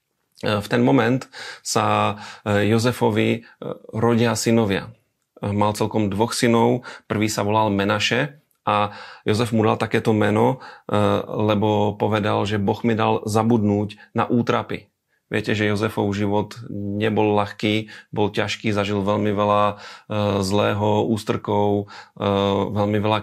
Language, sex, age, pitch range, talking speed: Slovak, male, 30-49, 105-115 Hz, 115 wpm